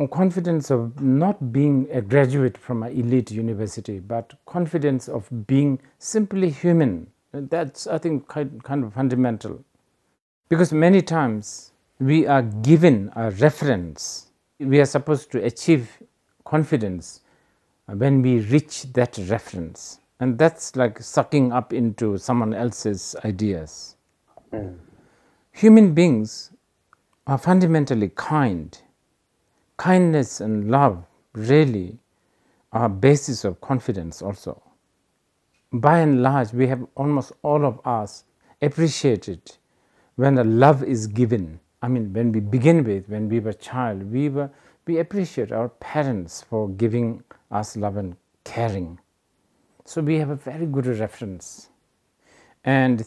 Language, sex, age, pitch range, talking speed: English, male, 50-69, 110-145 Hz, 120 wpm